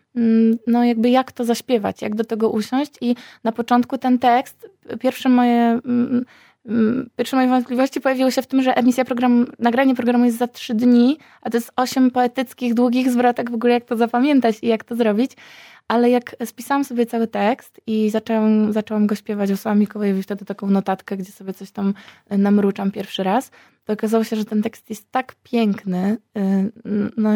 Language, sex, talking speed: Polish, female, 180 wpm